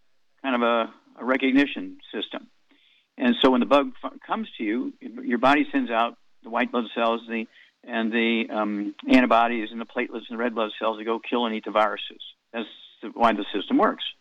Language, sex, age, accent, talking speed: English, male, 50-69, American, 205 wpm